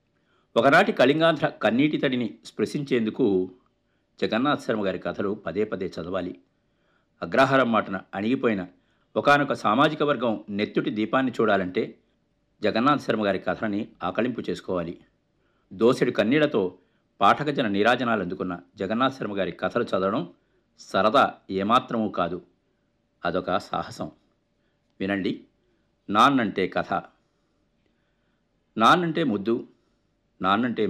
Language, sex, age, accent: Telugu, male, 60-79, native